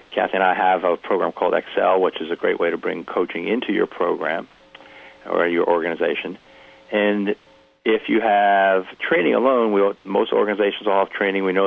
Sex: male